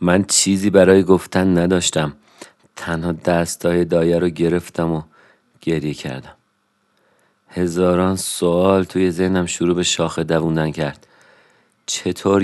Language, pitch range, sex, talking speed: Persian, 85-95 Hz, male, 110 wpm